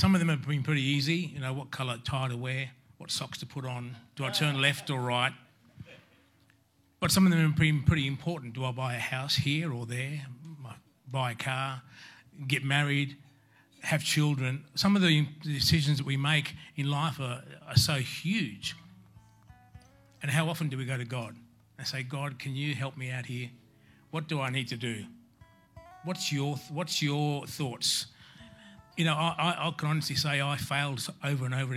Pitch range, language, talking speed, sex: 125-150 Hz, English, 190 wpm, male